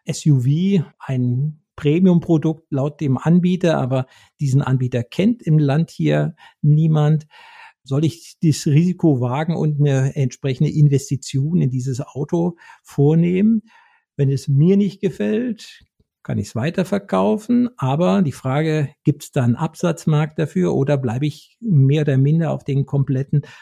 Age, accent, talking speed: 50-69, German, 135 wpm